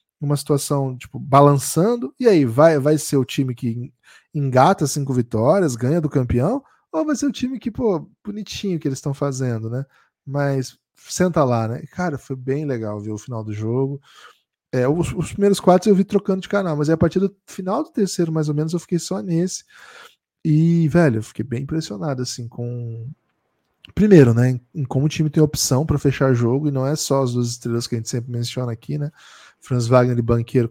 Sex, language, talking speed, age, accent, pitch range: male, Portuguese, 205 wpm, 10-29, Brazilian, 125-165 Hz